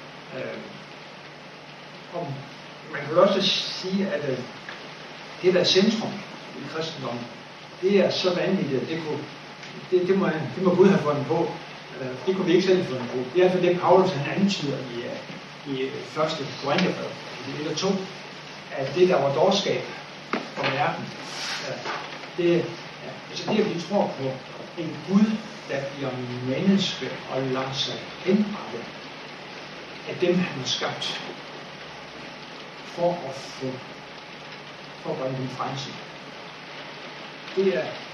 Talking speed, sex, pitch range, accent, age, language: 135 wpm, male, 140-185 Hz, native, 60-79, Danish